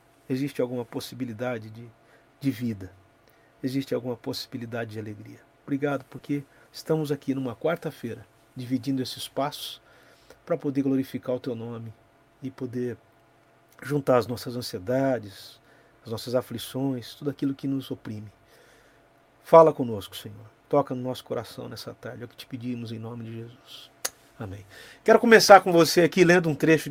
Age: 50-69